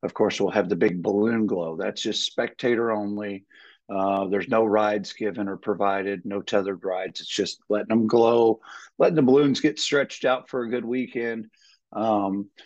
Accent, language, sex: American, English, male